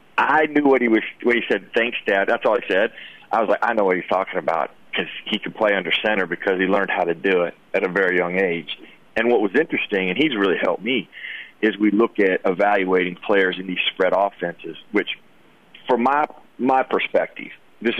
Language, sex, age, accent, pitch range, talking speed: English, male, 40-59, American, 95-115 Hz, 220 wpm